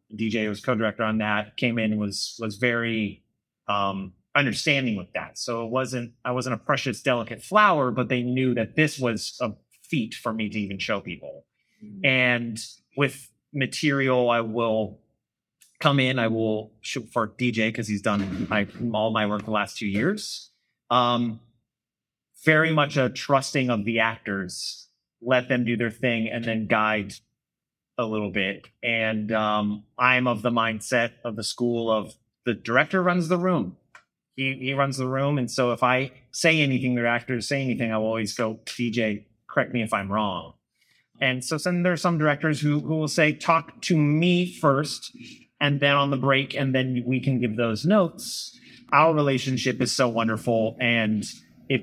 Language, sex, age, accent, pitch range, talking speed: English, male, 30-49, American, 110-135 Hz, 175 wpm